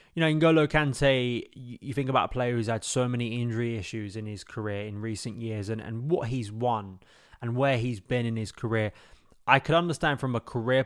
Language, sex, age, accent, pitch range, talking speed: English, male, 20-39, British, 110-130 Hz, 215 wpm